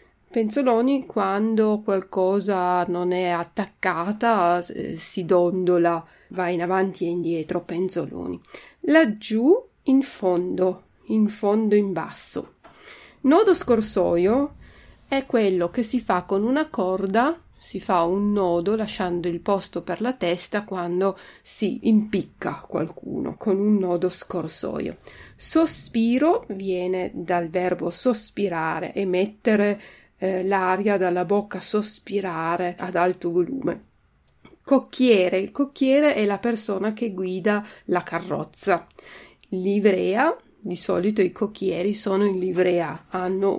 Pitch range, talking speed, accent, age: 180-220 Hz, 115 wpm, native, 40-59